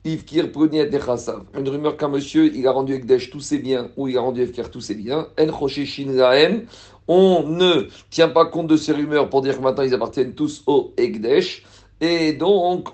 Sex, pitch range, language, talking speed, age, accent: male, 135-170 Hz, French, 175 wpm, 50-69, French